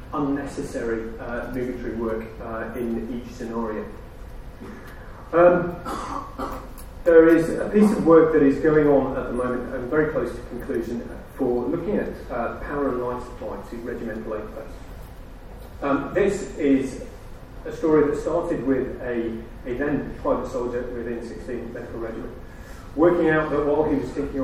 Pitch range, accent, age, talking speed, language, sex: 120-145 Hz, British, 30-49, 150 wpm, English, male